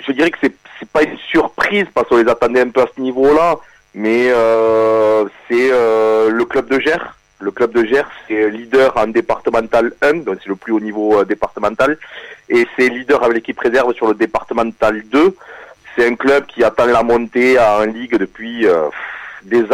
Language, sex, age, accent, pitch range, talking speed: French, male, 30-49, French, 110-130 Hz, 200 wpm